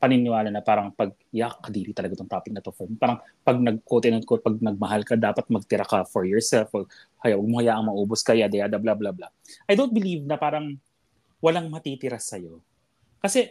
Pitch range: 115-175 Hz